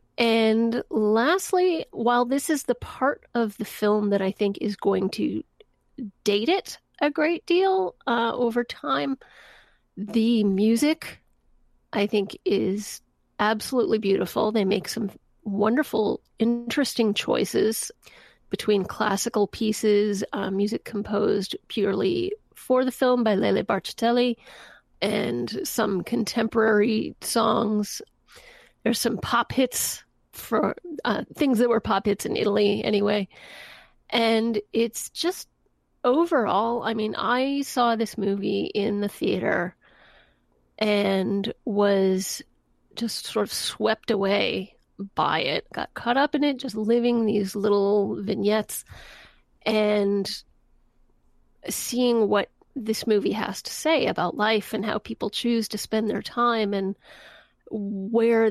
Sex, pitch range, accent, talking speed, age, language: female, 205-245 Hz, American, 125 wpm, 30-49, English